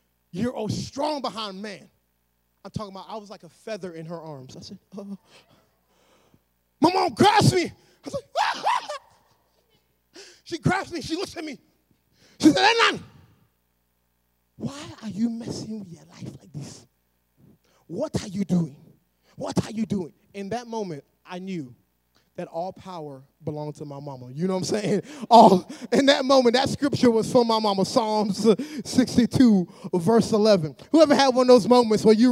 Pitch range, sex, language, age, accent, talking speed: 170-240 Hz, male, English, 20-39, American, 170 wpm